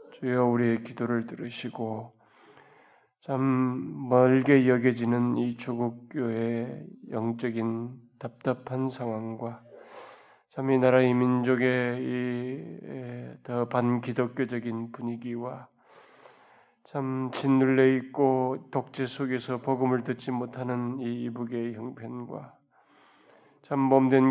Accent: native